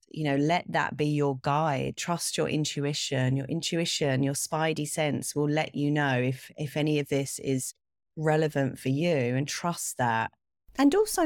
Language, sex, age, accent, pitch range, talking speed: English, female, 30-49, British, 135-175 Hz, 175 wpm